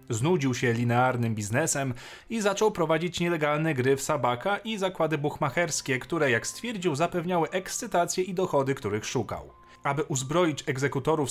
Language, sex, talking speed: Polish, male, 140 wpm